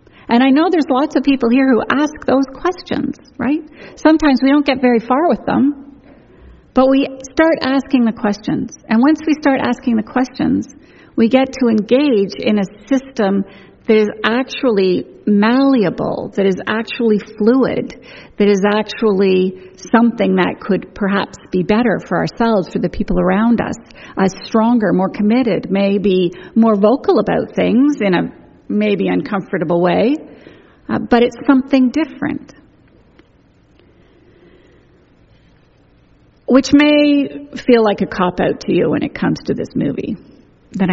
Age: 50-69